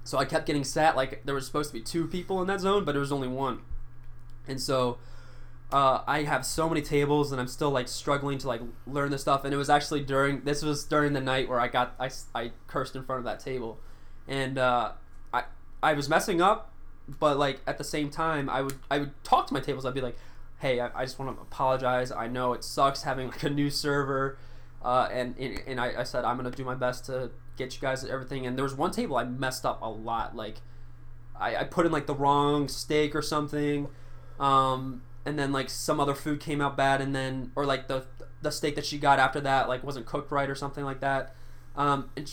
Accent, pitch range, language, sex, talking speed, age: American, 125-145 Hz, English, male, 240 wpm, 20-39